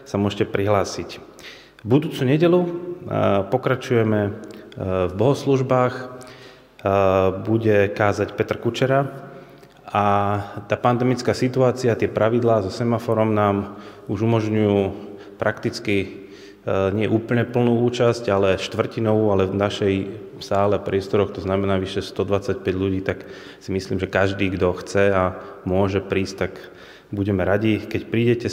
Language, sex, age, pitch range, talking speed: Slovak, male, 30-49, 95-115 Hz, 120 wpm